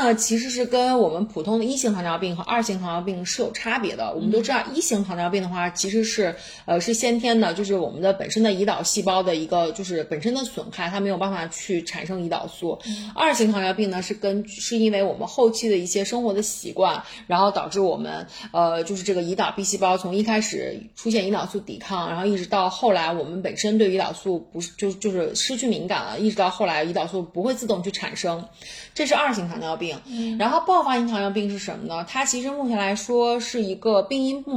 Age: 30-49